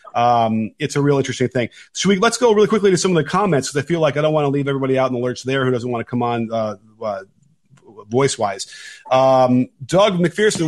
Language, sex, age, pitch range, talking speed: English, male, 30-49, 125-150 Hz, 245 wpm